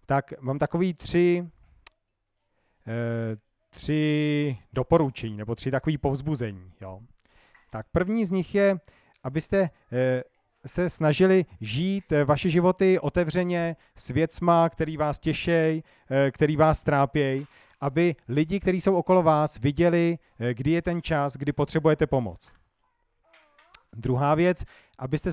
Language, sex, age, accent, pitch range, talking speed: Czech, male, 40-59, native, 130-165 Hz, 115 wpm